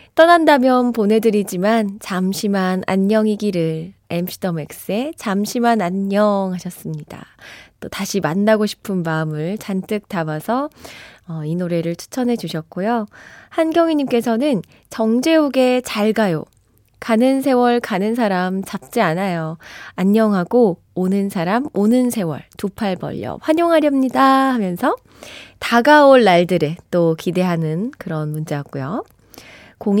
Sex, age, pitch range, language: female, 20-39, 175-245 Hz, Korean